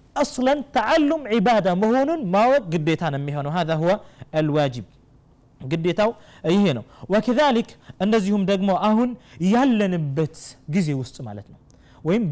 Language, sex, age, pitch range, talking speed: Amharic, male, 30-49, 145-240 Hz, 100 wpm